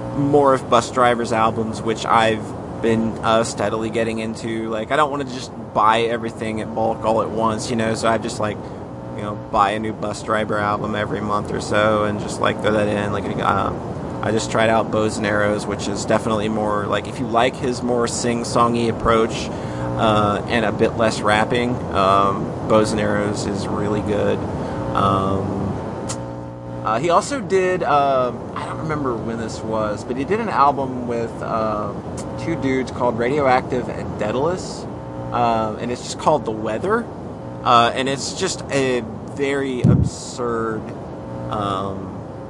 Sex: male